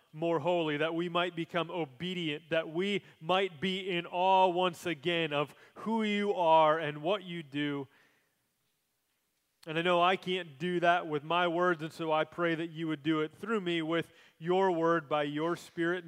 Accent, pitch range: American, 150-185 Hz